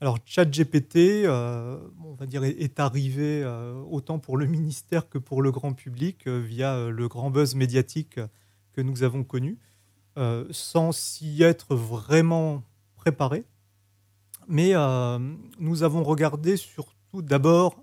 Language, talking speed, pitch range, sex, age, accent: French, 140 wpm, 125-155 Hz, male, 30-49, French